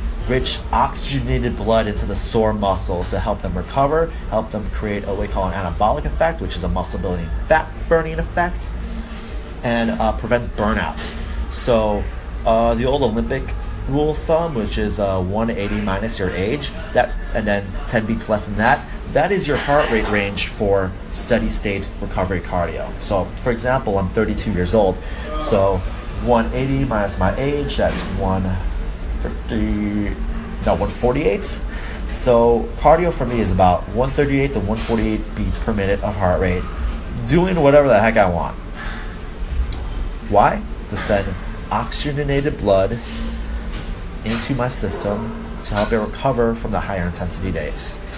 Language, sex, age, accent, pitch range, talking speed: English, male, 30-49, American, 95-115 Hz, 150 wpm